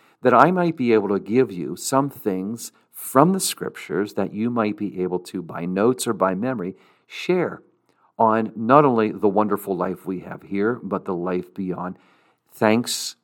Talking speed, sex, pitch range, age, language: 175 wpm, male, 95-130 Hz, 50-69, English